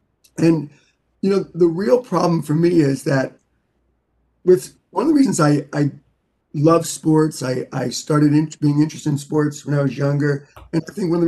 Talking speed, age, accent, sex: 190 wpm, 30-49, American, male